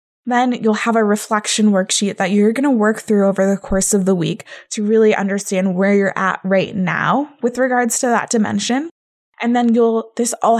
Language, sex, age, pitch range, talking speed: English, female, 20-39, 195-230 Hz, 210 wpm